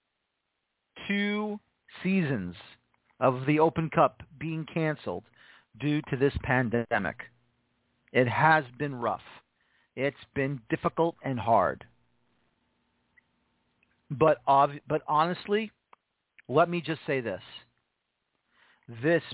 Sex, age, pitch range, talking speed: male, 40-59, 115-155 Hz, 95 wpm